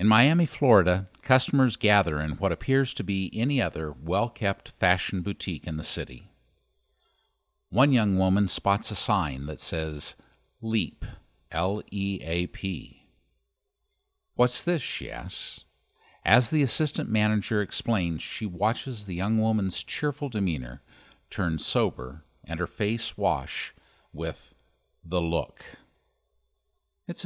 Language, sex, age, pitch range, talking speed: English, male, 50-69, 80-120 Hz, 120 wpm